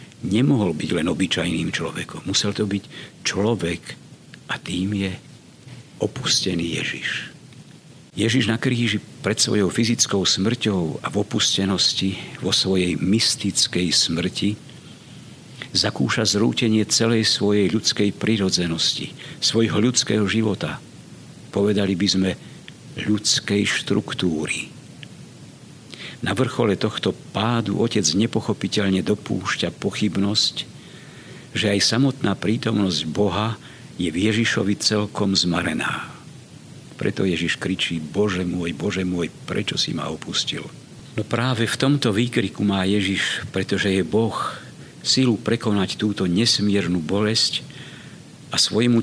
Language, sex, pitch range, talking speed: Slovak, male, 95-115 Hz, 110 wpm